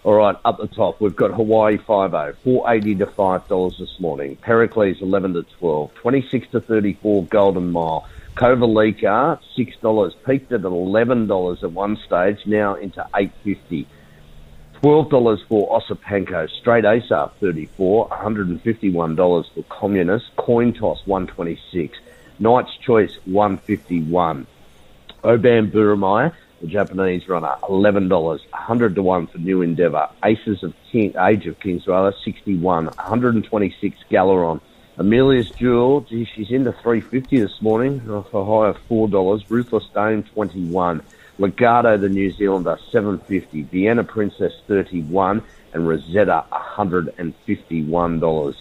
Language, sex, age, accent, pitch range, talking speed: English, male, 50-69, Australian, 90-115 Hz, 145 wpm